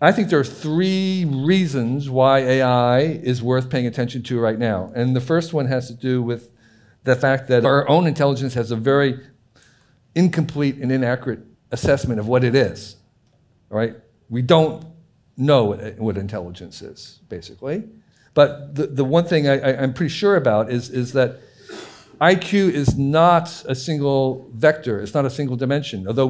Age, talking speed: 50-69, 170 wpm